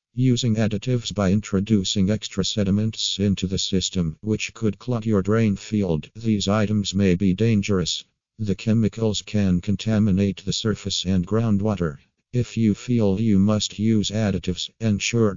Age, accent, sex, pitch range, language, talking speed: 50-69, American, male, 95-110 Hz, English, 140 wpm